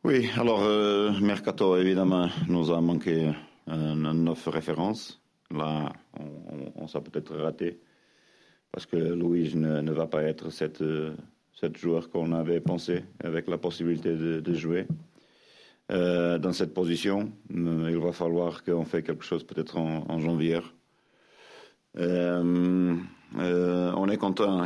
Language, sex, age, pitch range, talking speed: French, male, 40-59, 80-90 Hz, 140 wpm